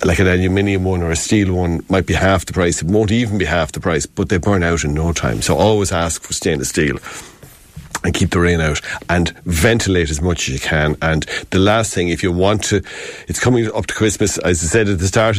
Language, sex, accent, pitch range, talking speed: English, male, Irish, 85-110 Hz, 250 wpm